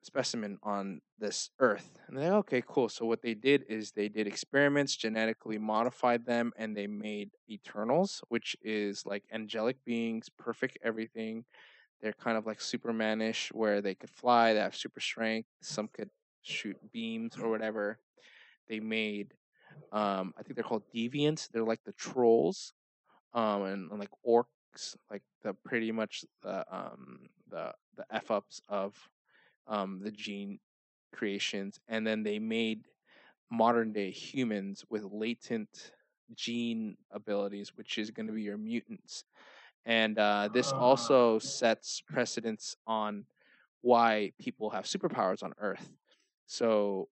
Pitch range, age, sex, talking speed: 105-120 Hz, 20-39, male, 145 wpm